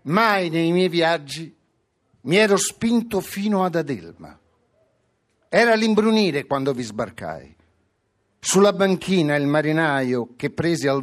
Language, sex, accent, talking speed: Italian, male, native, 120 wpm